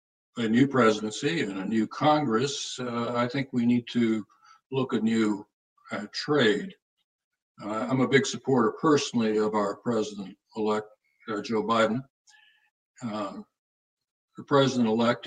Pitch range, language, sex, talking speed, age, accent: 110-130 Hz, English, male, 125 wpm, 60-79, American